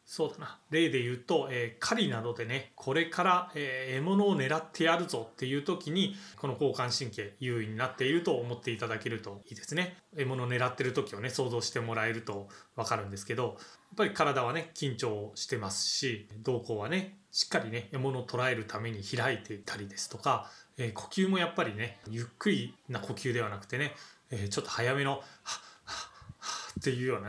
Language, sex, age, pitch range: Japanese, male, 20-39, 115-160 Hz